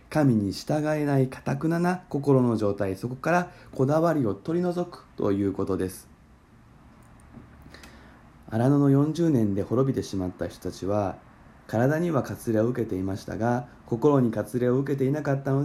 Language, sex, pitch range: Japanese, male, 105-140 Hz